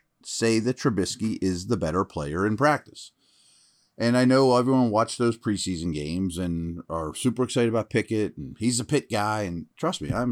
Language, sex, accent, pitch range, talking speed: English, male, American, 90-125 Hz, 185 wpm